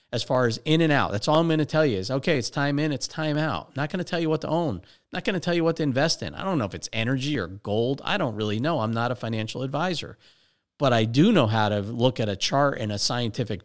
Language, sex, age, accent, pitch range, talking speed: English, male, 40-59, American, 110-155 Hz, 300 wpm